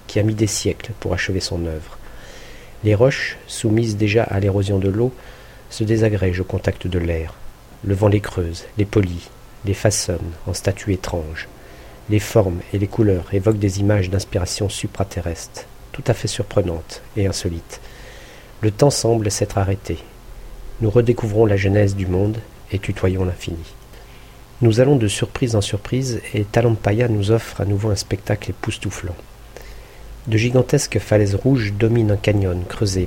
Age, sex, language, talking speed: 50-69, male, French, 160 wpm